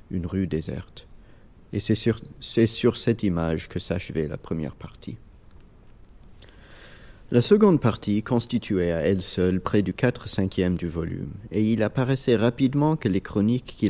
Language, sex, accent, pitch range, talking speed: French, male, French, 90-115 Hz, 155 wpm